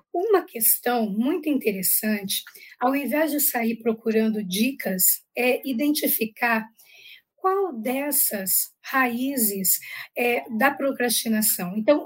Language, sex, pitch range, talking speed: Portuguese, female, 230-295 Hz, 90 wpm